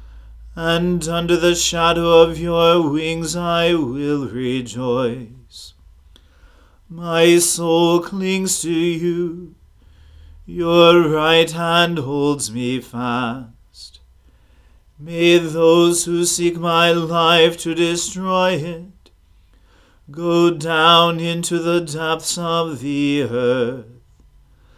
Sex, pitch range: male, 125-170 Hz